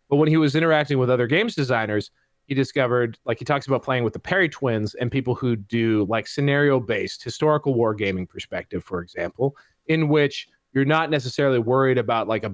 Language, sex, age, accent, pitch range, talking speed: English, male, 30-49, American, 115-145 Hz, 190 wpm